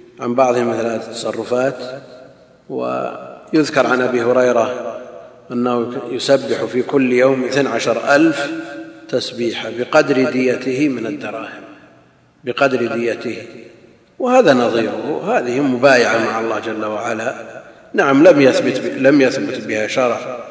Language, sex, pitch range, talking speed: Arabic, male, 115-135 Hz, 105 wpm